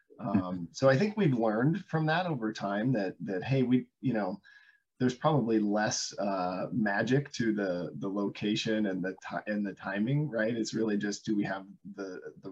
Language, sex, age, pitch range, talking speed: English, male, 20-39, 100-135 Hz, 190 wpm